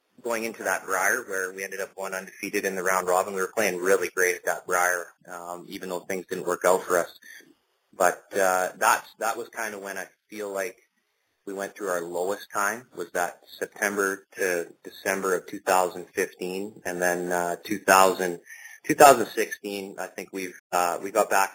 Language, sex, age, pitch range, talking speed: English, male, 30-49, 90-105 Hz, 185 wpm